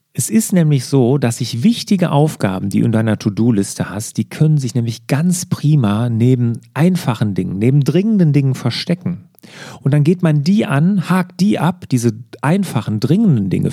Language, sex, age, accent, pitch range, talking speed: German, male, 40-59, German, 120-165 Hz, 175 wpm